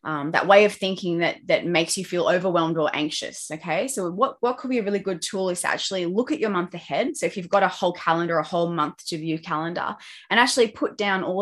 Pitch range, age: 165-210 Hz, 20-39